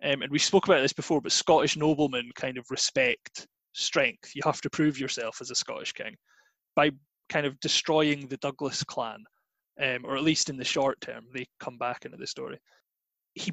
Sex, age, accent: male, 20-39, British